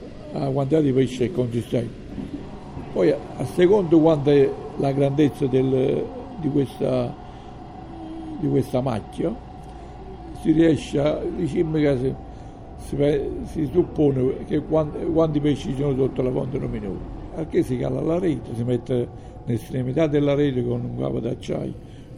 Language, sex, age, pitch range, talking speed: Italian, male, 60-79, 120-145 Hz, 140 wpm